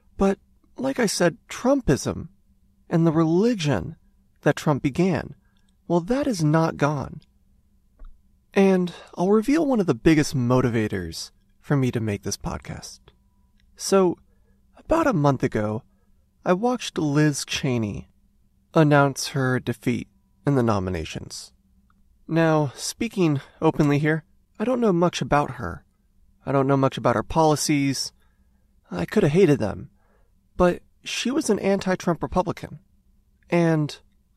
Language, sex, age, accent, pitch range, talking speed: English, male, 30-49, American, 120-175 Hz, 125 wpm